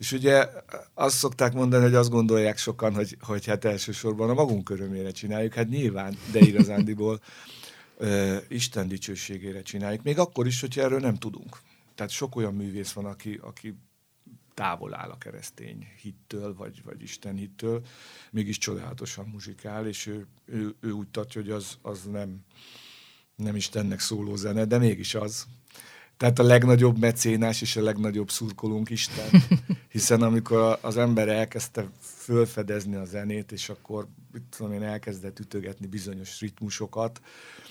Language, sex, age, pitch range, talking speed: Hungarian, male, 50-69, 105-120 Hz, 145 wpm